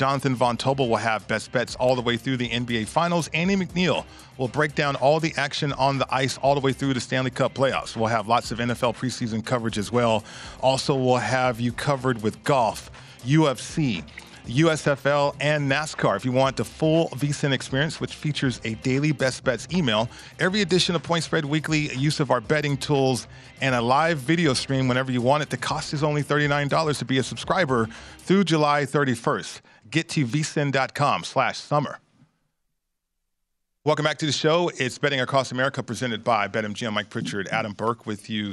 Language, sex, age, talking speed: English, male, 40-59, 190 wpm